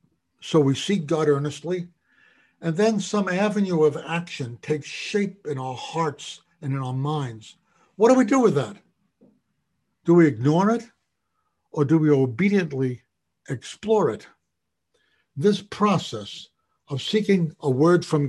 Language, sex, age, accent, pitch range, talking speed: English, male, 60-79, American, 135-200 Hz, 140 wpm